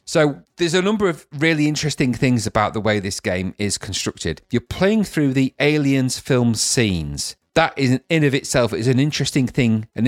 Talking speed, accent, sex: 190 wpm, British, male